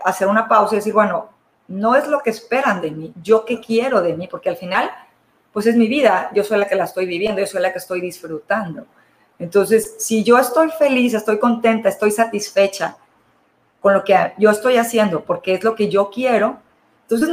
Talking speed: 210 wpm